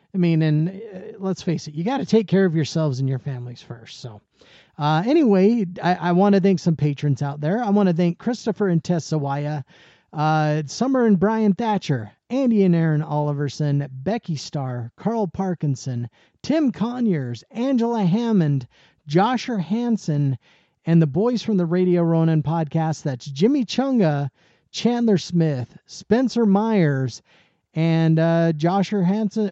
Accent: American